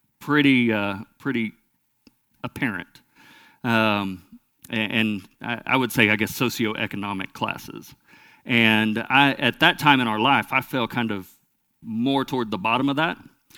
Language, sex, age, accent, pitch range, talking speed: English, male, 50-69, American, 110-135 Hz, 145 wpm